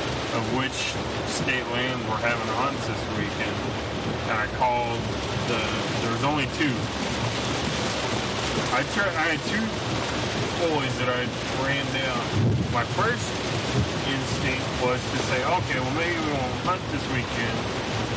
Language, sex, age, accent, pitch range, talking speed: English, male, 30-49, American, 115-130 Hz, 135 wpm